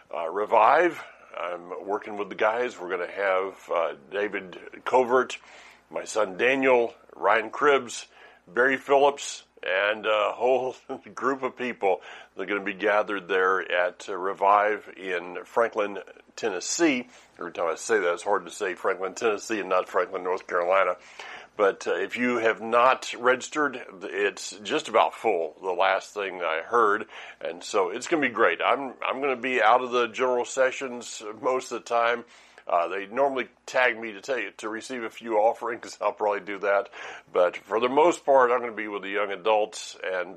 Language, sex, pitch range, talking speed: English, male, 100-125 Hz, 180 wpm